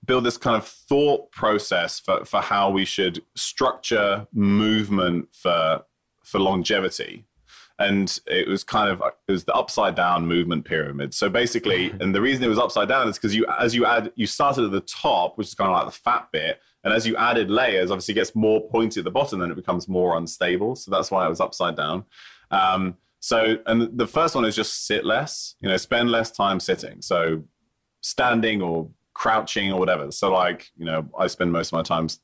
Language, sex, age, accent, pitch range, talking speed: English, male, 20-39, British, 85-115 Hz, 210 wpm